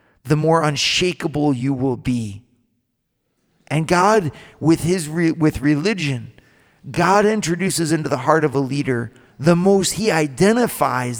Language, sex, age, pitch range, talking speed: English, male, 40-59, 125-170 Hz, 135 wpm